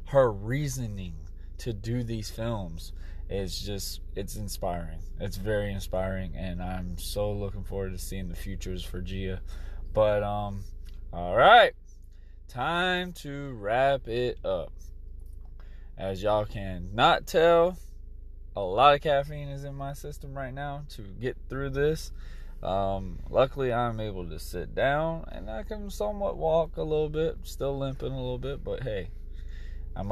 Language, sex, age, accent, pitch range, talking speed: English, male, 20-39, American, 85-135 Hz, 150 wpm